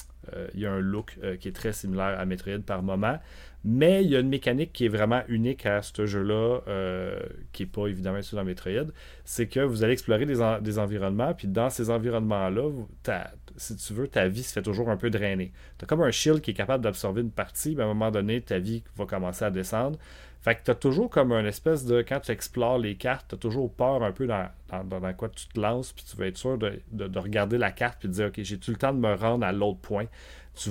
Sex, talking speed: male, 255 wpm